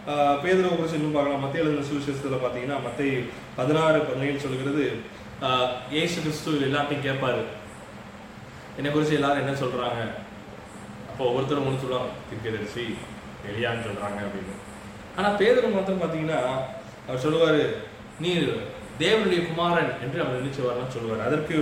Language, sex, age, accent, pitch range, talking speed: Tamil, male, 20-39, native, 130-170 Hz, 40 wpm